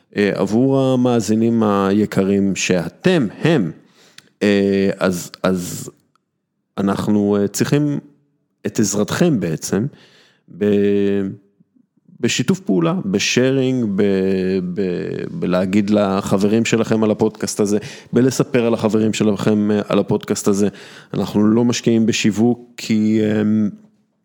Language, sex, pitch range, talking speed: Hebrew, male, 100-120 Hz, 85 wpm